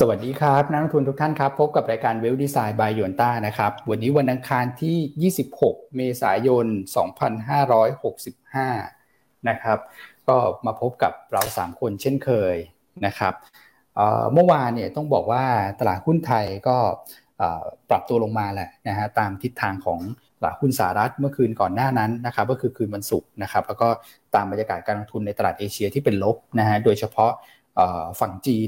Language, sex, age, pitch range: Thai, male, 20-39, 105-130 Hz